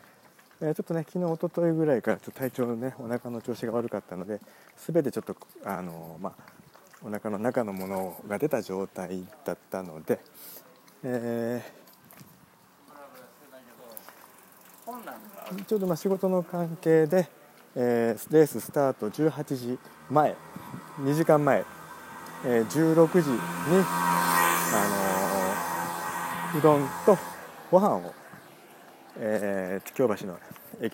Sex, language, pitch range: male, Japanese, 100-155 Hz